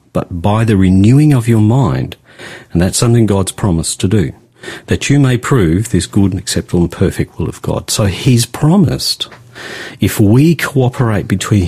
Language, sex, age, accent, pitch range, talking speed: English, male, 50-69, Australian, 95-120 Hz, 175 wpm